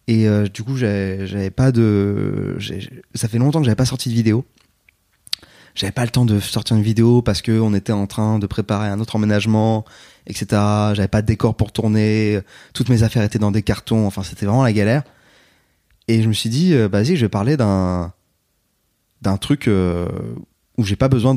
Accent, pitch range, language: French, 100-125 Hz, French